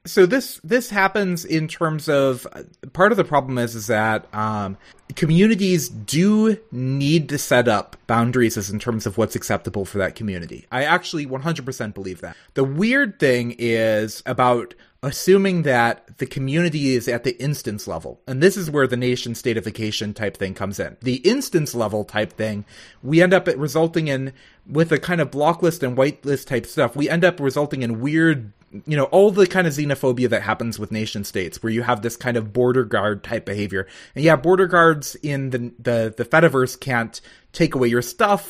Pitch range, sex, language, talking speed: 115-165 Hz, male, English, 195 wpm